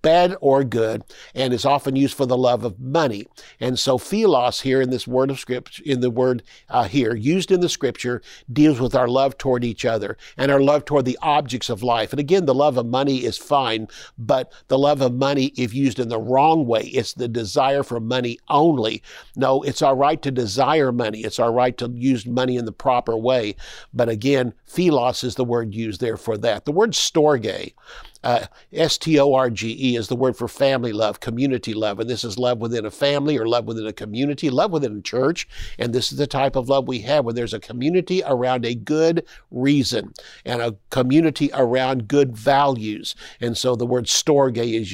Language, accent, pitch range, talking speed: English, American, 120-140 Hz, 205 wpm